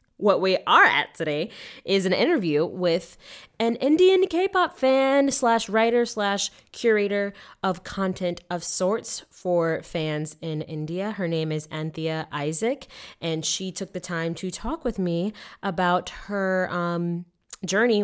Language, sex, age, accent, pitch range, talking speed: English, female, 20-39, American, 155-195 Hz, 145 wpm